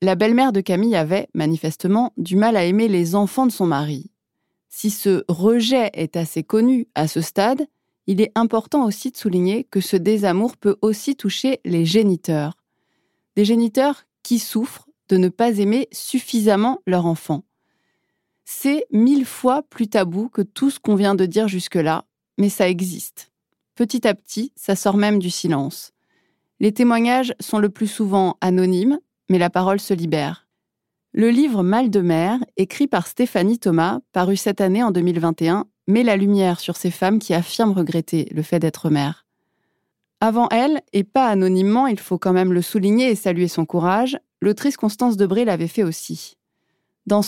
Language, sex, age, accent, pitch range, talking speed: French, female, 20-39, French, 180-230 Hz, 175 wpm